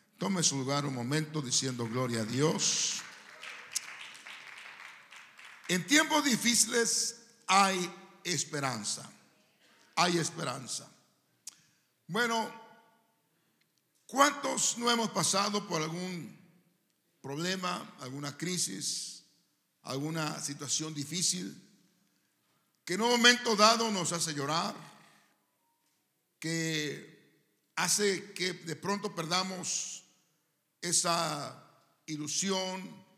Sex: male